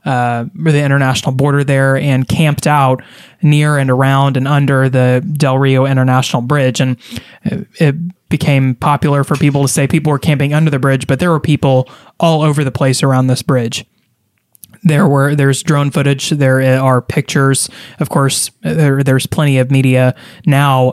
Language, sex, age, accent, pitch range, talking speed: English, male, 20-39, American, 130-150 Hz, 170 wpm